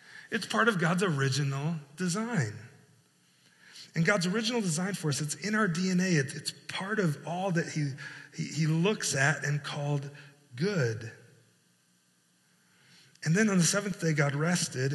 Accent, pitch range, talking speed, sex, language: American, 135-170 Hz, 150 wpm, male, English